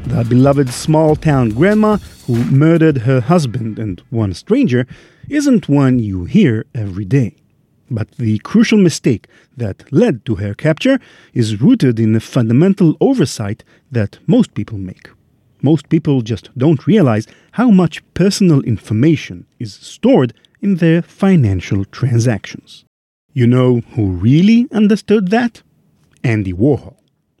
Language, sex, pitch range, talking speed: English, male, 115-170 Hz, 130 wpm